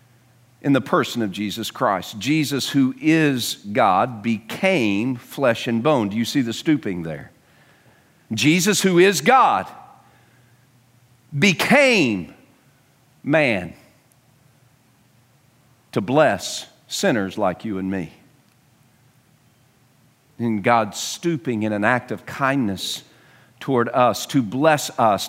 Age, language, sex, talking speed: 50-69, English, male, 110 wpm